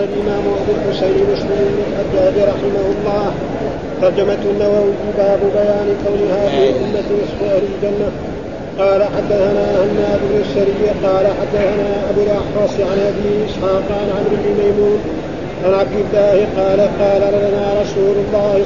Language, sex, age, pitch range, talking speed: Arabic, male, 50-69, 200-205 Hz, 125 wpm